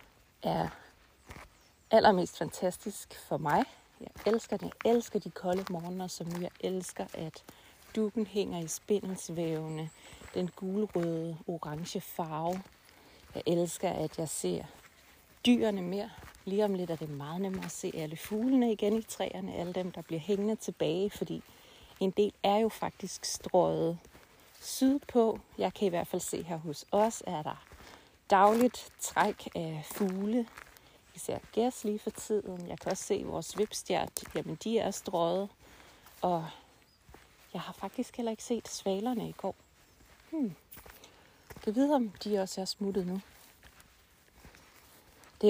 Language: Danish